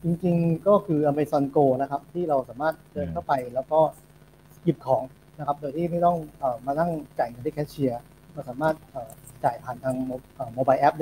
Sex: male